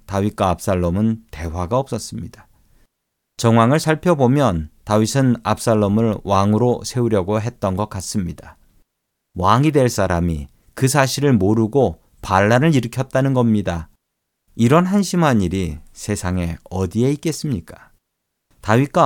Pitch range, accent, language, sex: 95-130 Hz, native, Korean, male